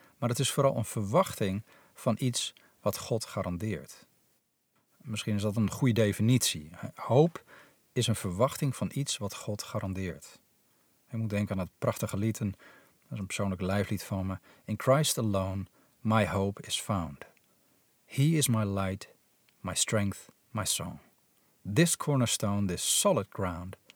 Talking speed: 150 wpm